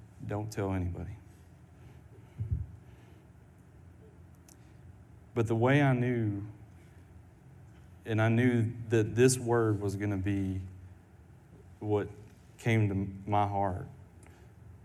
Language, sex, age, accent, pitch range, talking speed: English, male, 30-49, American, 95-115 Hz, 95 wpm